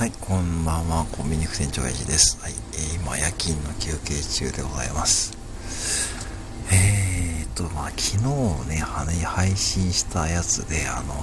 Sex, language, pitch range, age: male, Japanese, 85-110 Hz, 50-69